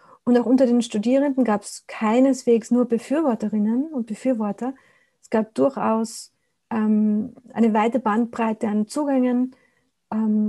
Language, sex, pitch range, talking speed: German, female, 220-250 Hz, 125 wpm